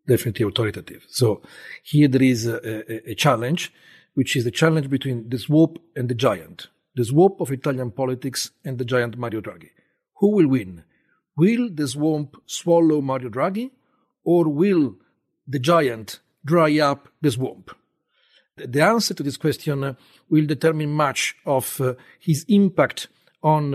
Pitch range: 130-170 Hz